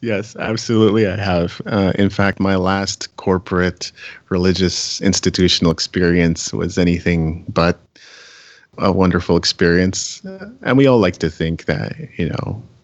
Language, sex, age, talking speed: English, male, 30-49, 130 wpm